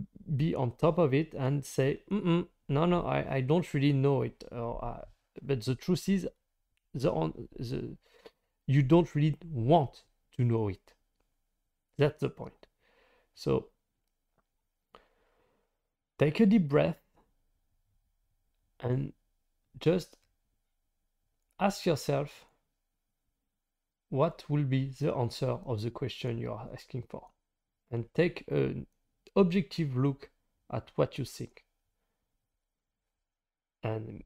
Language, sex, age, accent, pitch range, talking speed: English, male, 40-59, French, 115-170 Hz, 115 wpm